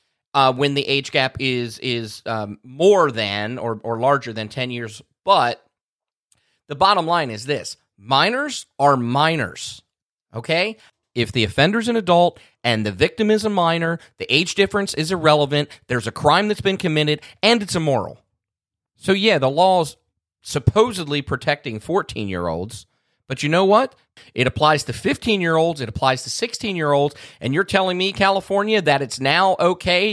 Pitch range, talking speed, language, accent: 130-195 Hz, 155 wpm, English, American